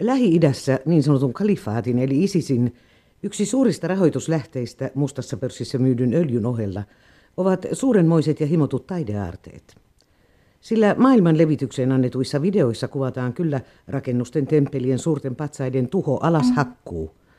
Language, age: Finnish, 50-69